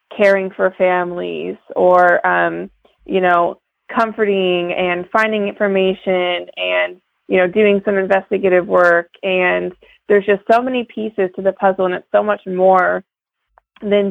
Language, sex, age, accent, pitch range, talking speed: English, female, 20-39, American, 185-205 Hz, 140 wpm